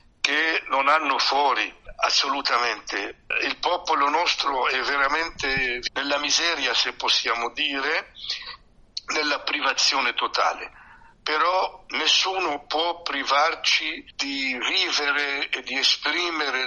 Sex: male